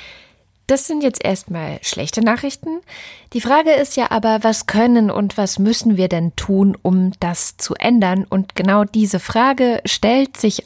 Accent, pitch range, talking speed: German, 170-220 Hz, 165 wpm